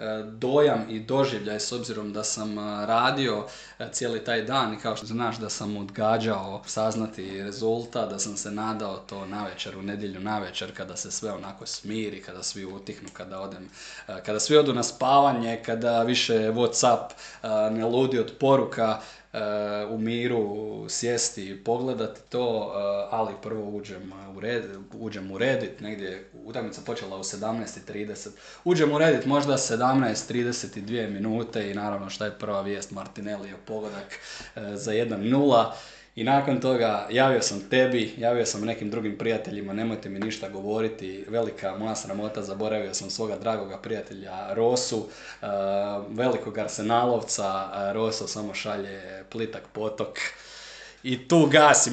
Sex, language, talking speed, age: male, Croatian, 140 wpm, 20-39